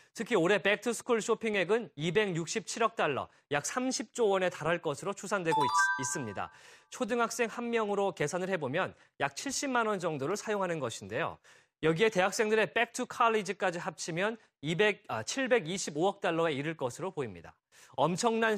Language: Korean